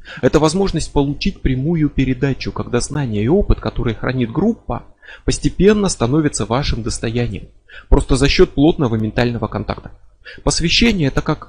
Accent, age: native, 20-39